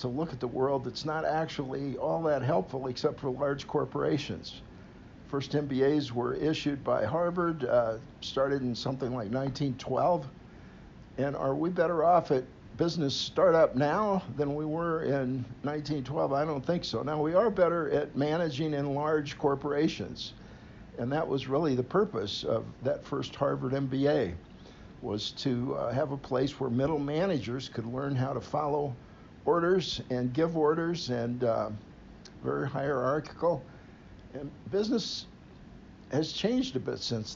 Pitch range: 125-155 Hz